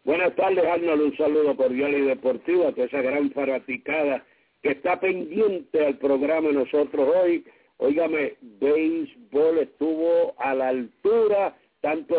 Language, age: English, 60-79